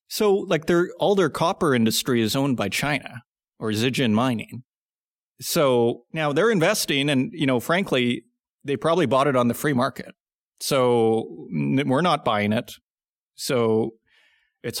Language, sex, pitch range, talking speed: English, male, 125-165 Hz, 150 wpm